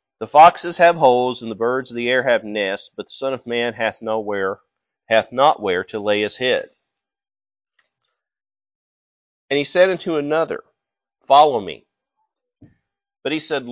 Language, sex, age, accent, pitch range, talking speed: English, male, 40-59, American, 120-190 Hz, 160 wpm